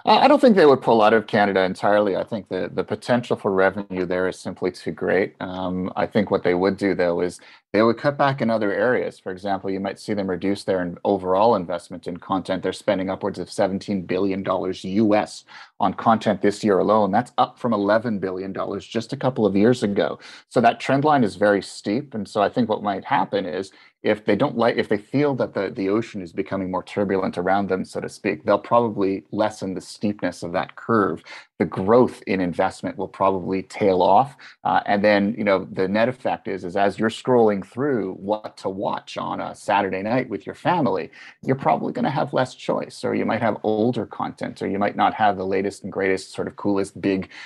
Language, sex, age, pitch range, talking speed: English, male, 30-49, 95-115 Hz, 220 wpm